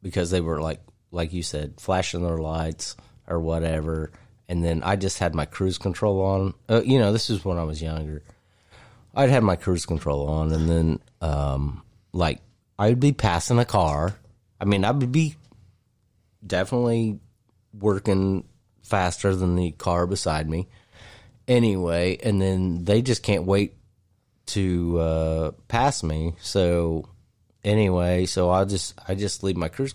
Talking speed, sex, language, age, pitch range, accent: 160 wpm, male, English, 30-49, 80-105 Hz, American